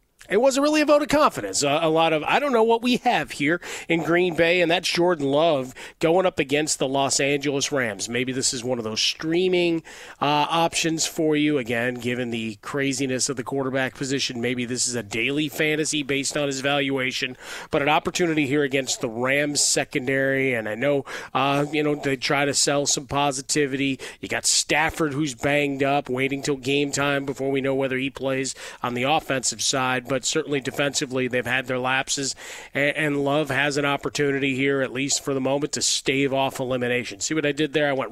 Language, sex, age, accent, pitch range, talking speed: English, male, 30-49, American, 130-150 Hz, 205 wpm